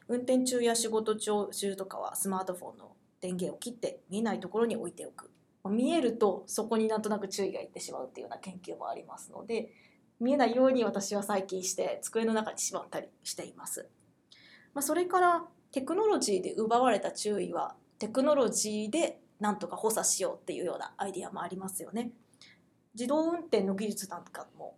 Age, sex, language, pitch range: 20-39, female, Japanese, 200-270 Hz